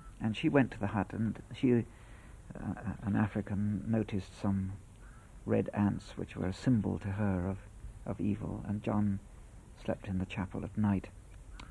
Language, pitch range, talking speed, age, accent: English, 100-110 Hz, 165 wpm, 60-79, British